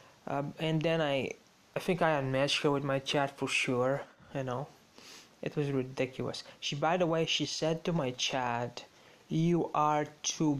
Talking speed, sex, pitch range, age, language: 175 wpm, male, 130-155 Hz, 20-39, English